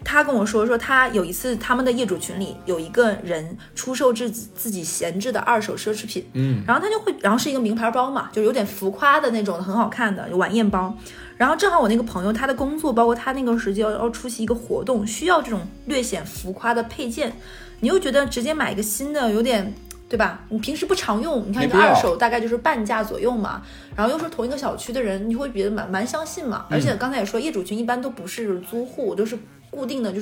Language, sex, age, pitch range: Chinese, female, 20-39, 205-255 Hz